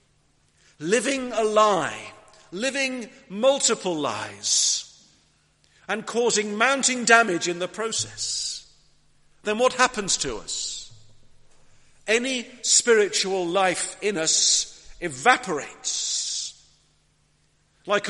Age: 50-69